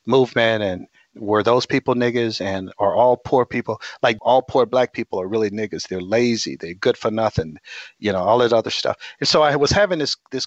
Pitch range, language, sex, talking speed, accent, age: 110-145 Hz, English, male, 220 wpm, American, 40-59